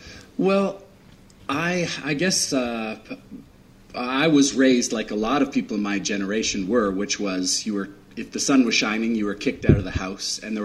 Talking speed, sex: 195 wpm, male